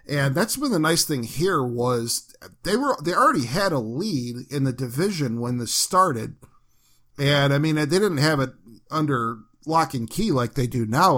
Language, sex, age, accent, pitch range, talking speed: English, male, 40-59, American, 125-160 Hz, 195 wpm